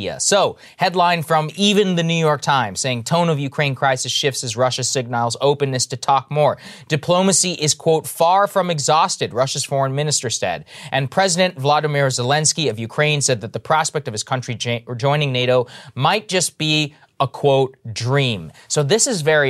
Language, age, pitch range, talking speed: English, 20-39, 125-155 Hz, 170 wpm